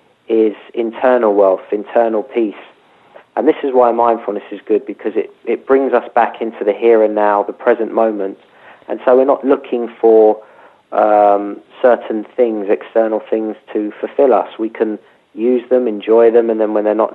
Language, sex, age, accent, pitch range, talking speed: English, male, 40-59, British, 110-125 Hz, 180 wpm